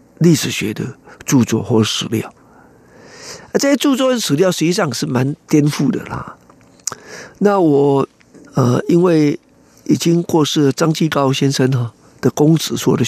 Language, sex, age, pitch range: Chinese, male, 50-69, 140-205 Hz